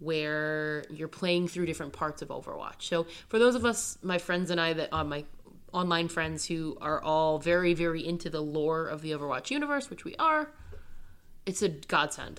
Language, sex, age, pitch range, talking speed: English, female, 20-39, 155-185 Hz, 195 wpm